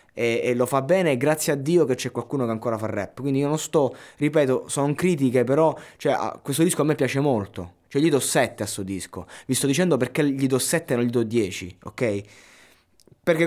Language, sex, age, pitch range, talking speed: Italian, male, 20-39, 110-150 Hz, 225 wpm